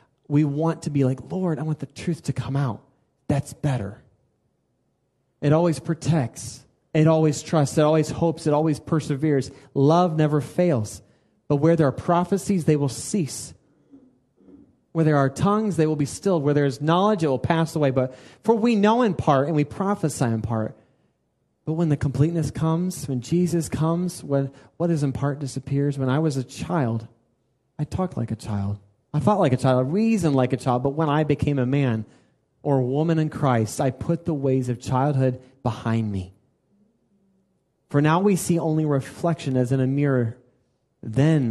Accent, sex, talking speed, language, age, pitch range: American, male, 185 wpm, English, 30-49, 125-160 Hz